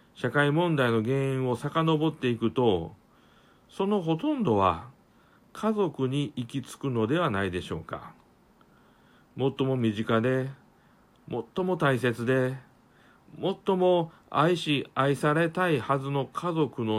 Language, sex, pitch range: Japanese, male, 115-160 Hz